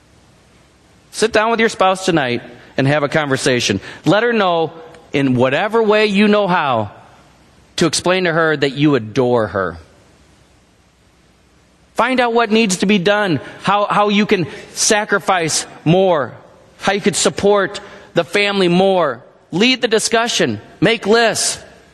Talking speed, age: 140 wpm, 40-59